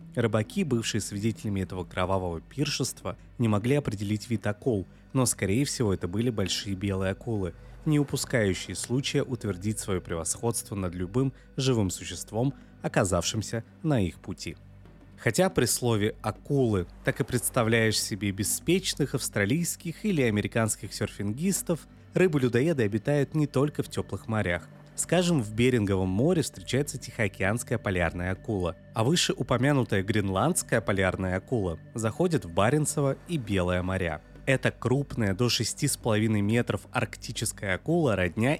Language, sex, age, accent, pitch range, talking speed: Russian, male, 20-39, native, 100-135 Hz, 125 wpm